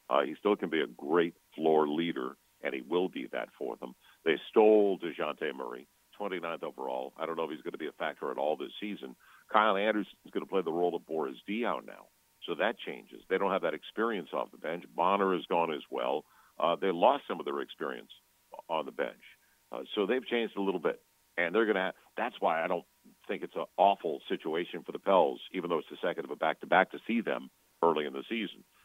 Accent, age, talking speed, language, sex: American, 50-69, 235 wpm, English, male